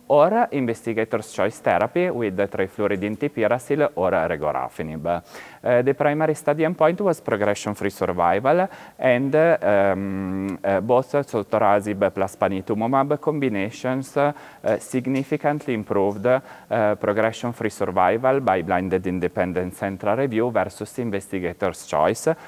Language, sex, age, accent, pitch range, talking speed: English, male, 30-49, Italian, 95-130 Hz, 100 wpm